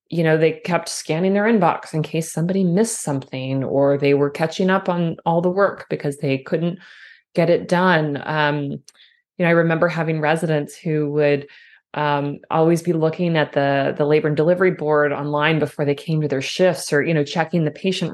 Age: 30-49